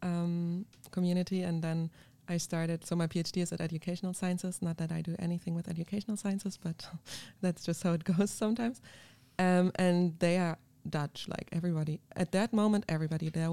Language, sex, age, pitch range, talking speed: English, female, 20-39, 165-195 Hz, 175 wpm